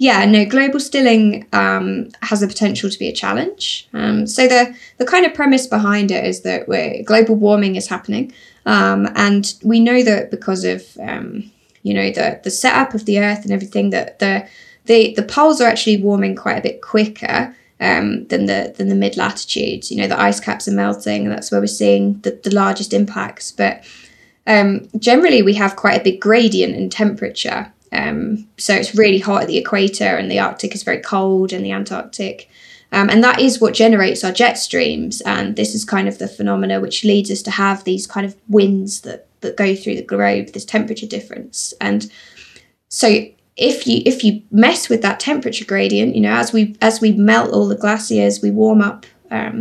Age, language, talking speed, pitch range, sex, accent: 10-29, English, 200 wpm, 185-230 Hz, female, British